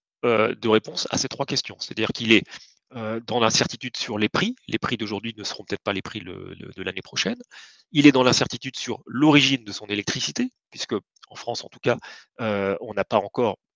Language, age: French, 30-49